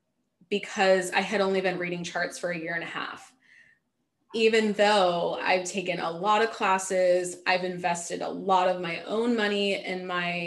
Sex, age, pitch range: female, 20-39, 185-230 Hz